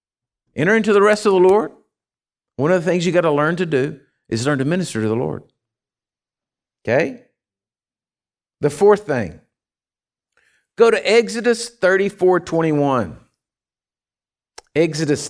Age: 50-69